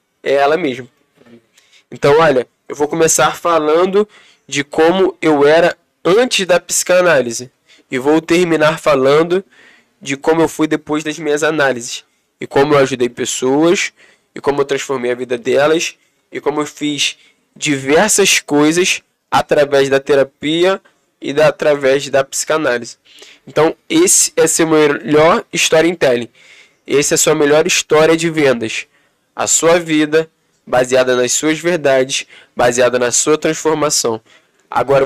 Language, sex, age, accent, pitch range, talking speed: Portuguese, male, 10-29, Brazilian, 140-170 Hz, 135 wpm